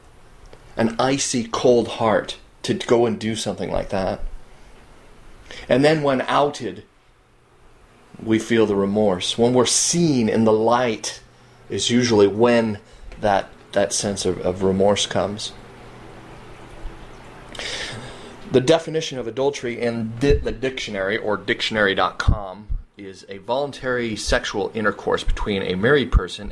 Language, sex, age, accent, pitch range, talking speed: English, male, 30-49, American, 100-120 Hz, 120 wpm